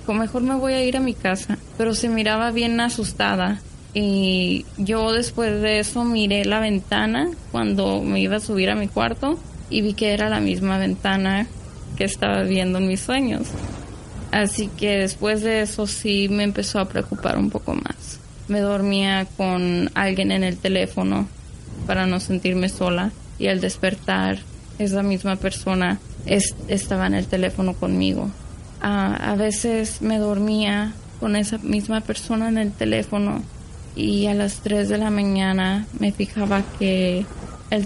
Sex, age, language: female, 10-29, Spanish